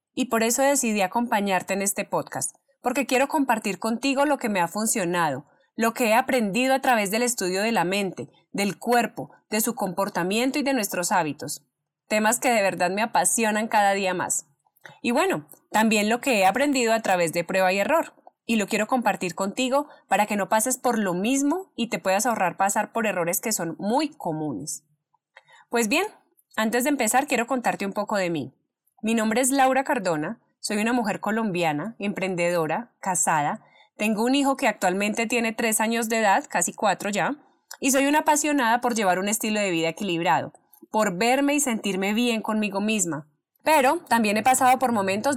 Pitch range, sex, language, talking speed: 195-255 Hz, female, Spanish, 185 wpm